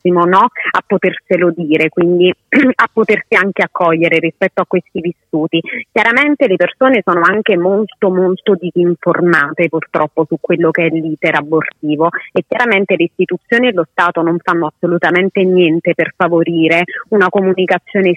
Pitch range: 170-195 Hz